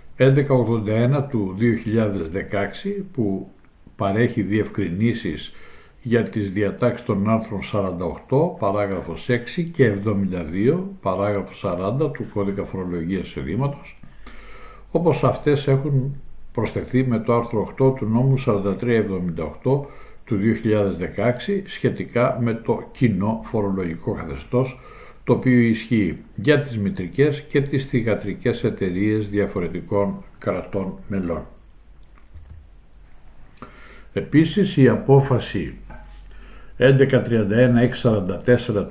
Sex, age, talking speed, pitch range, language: male, 60-79, 90 wpm, 100-125 Hz, Greek